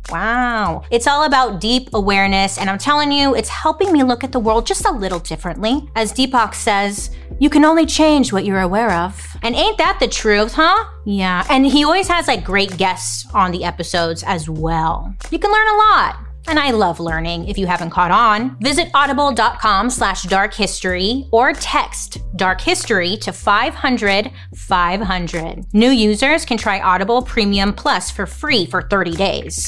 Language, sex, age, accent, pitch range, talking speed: English, female, 30-49, American, 175-255 Hz, 175 wpm